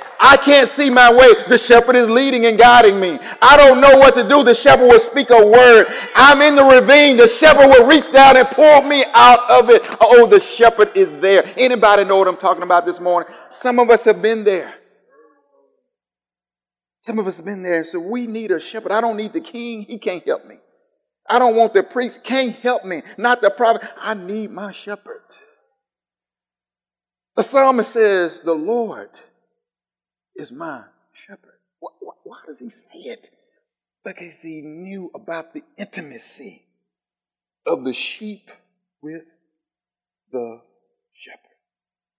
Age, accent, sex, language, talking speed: 50-69, American, male, English, 170 wpm